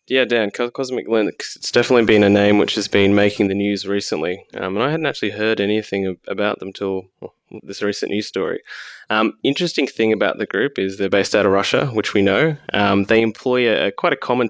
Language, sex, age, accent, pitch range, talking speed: English, male, 20-39, Australian, 100-110 Hz, 220 wpm